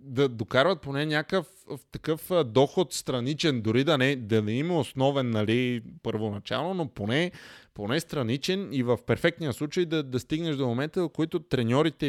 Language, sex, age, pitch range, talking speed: Bulgarian, male, 20-39, 130-170 Hz, 165 wpm